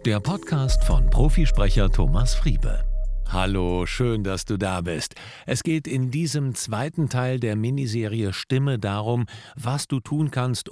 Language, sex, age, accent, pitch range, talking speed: German, male, 50-69, German, 105-130 Hz, 145 wpm